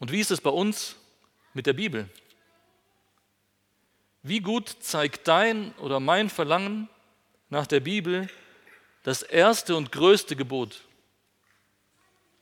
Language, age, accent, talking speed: German, 40-59, German, 115 wpm